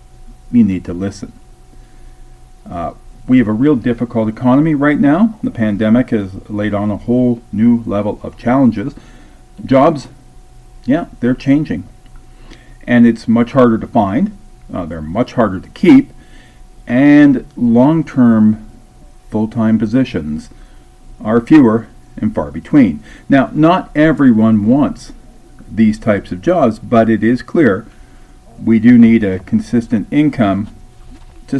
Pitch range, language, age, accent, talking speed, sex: 105-135 Hz, English, 40-59, American, 130 wpm, male